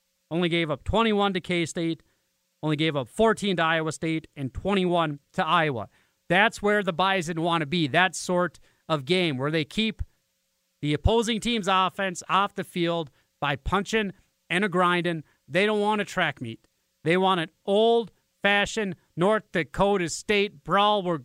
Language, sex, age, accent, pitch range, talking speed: English, male, 30-49, American, 165-210 Hz, 160 wpm